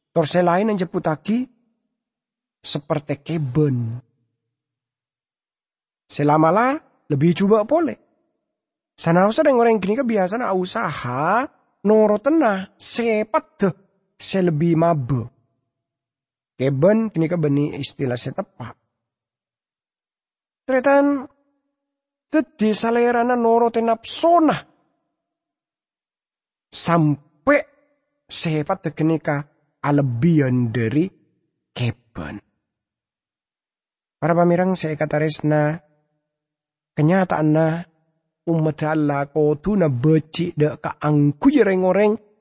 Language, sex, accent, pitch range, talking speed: English, male, Indonesian, 145-200 Hz, 75 wpm